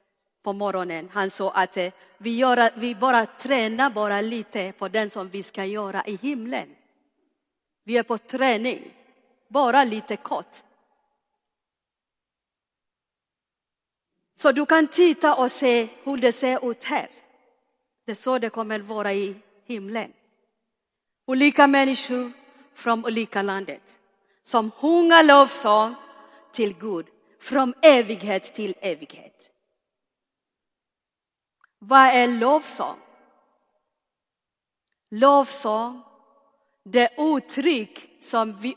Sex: female